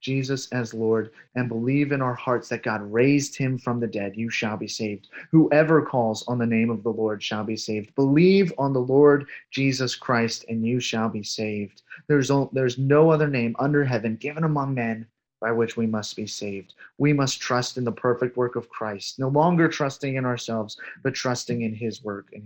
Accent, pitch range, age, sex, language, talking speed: American, 110-135 Hz, 30-49, male, English, 205 wpm